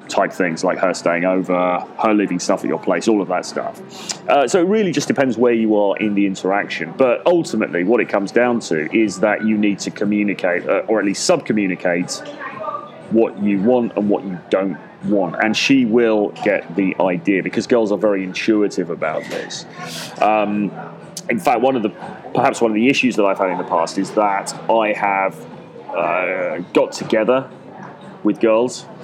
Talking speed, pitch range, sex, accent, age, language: 185 wpm, 95-115 Hz, male, British, 30-49, English